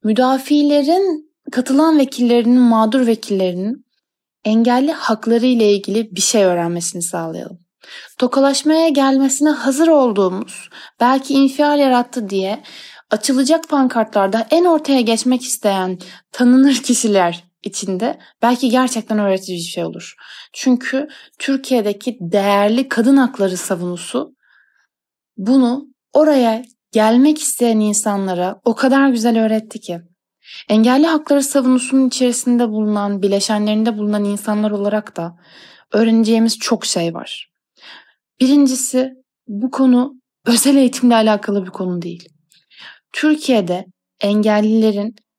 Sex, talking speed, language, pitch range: female, 100 wpm, Turkish, 205-265 Hz